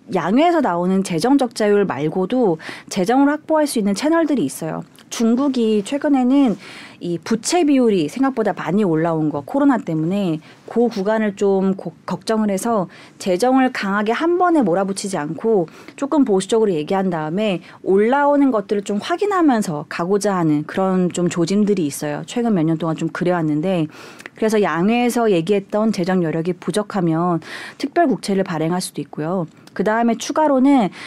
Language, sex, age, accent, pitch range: Korean, female, 30-49, native, 175-250 Hz